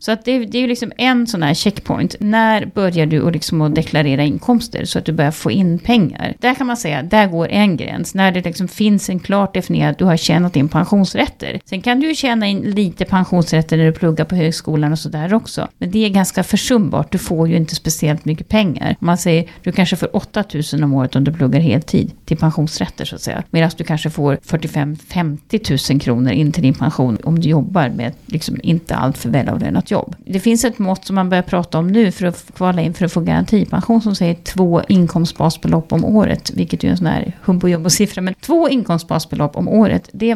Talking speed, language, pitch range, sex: 225 wpm, Swedish, 160-210 Hz, female